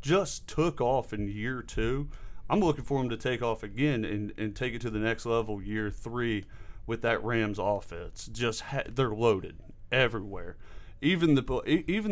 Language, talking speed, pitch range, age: English, 180 wpm, 110-145 Hz, 30-49